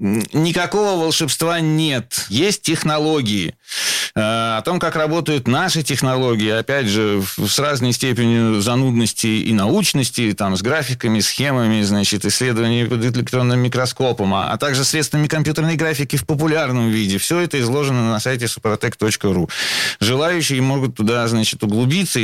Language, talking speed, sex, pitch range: Russian, 135 wpm, male, 110-140 Hz